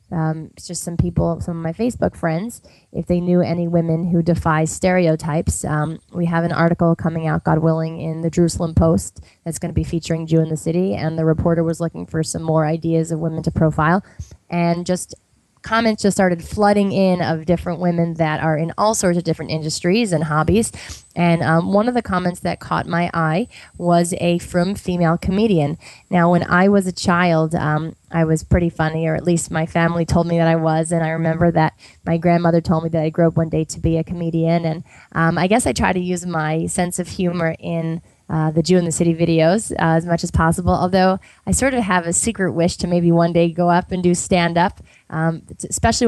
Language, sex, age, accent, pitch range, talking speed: English, female, 20-39, American, 165-180 Hz, 225 wpm